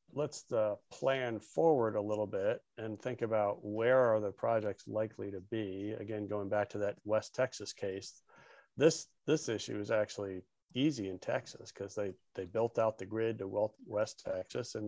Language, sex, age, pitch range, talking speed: English, male, 40-59, 100-110 Hz, 180 wpm